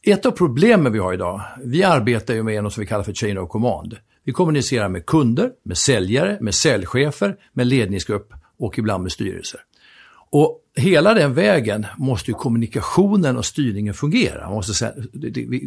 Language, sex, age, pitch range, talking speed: Swedish, male, 60-79, 100-135 Hz, 165 wpm